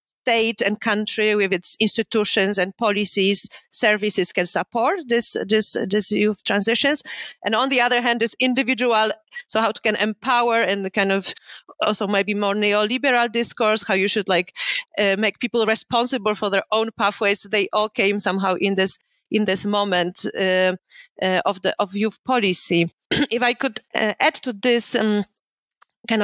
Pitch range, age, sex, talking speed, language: 200-240 Hz, 30-49, female, 165 wpm, English